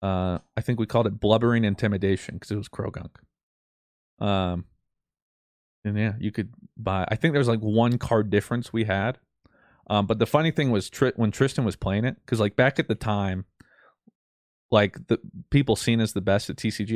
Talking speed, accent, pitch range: 200 wpm, American, 95-115 Hz